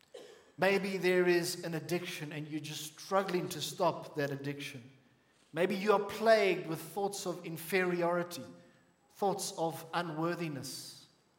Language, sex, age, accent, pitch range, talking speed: English, male, 50-69, South African, 165-215 Hz, 125 wpm